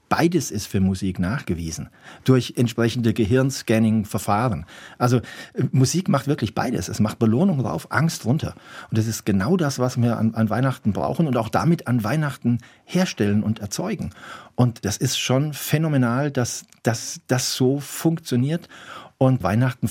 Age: 40-59